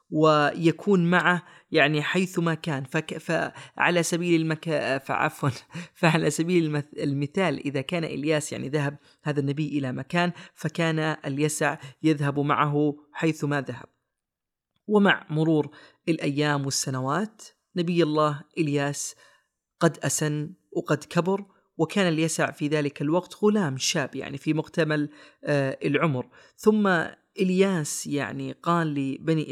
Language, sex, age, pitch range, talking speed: Arabic, female, 30-49, 145-170 Hz, 115 wpm